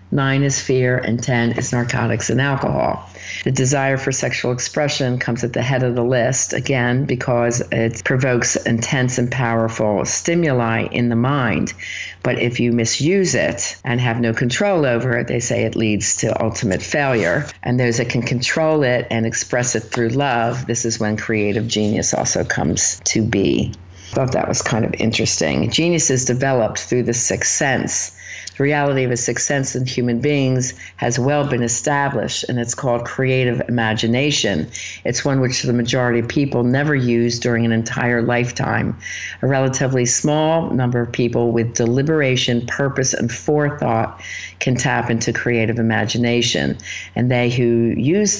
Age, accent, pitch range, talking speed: 50-69, American, 115-130 Hz, 165 wpm